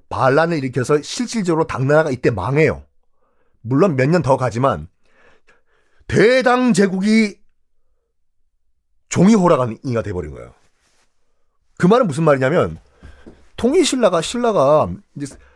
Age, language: 40-59, Korean